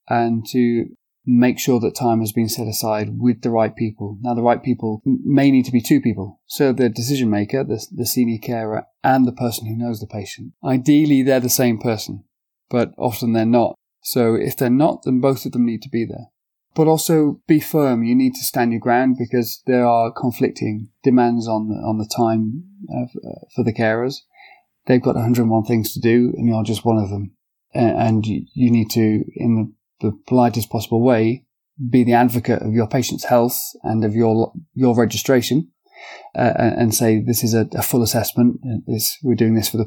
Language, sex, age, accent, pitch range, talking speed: English, male, 30-49, British, 110-125 Hz, 200 wpm